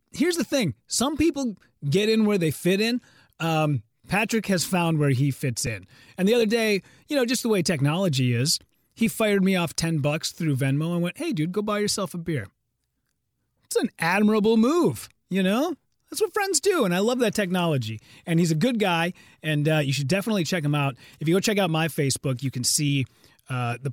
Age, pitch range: 30-49, 140-200 Hz